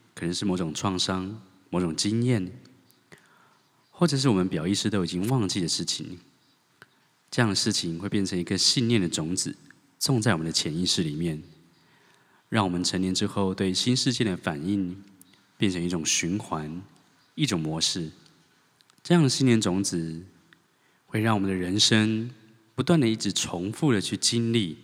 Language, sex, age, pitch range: English, male, 20-39, 90-115 Hz